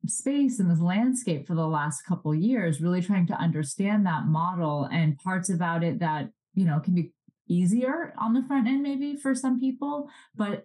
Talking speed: 190 wpm